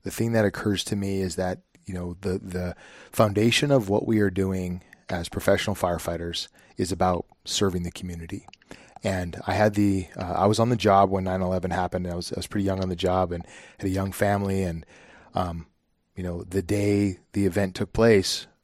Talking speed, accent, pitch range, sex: 205 wpm, American, 90-100 Hz, male